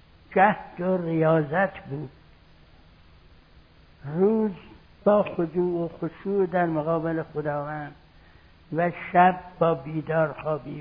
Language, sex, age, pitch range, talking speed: Persian, male, 60-79, 150-195 Hz, 90 wpm